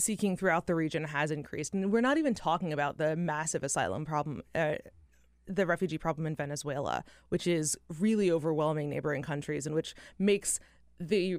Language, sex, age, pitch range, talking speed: English, female, 20-39, 155-195 Hz, 170 wpm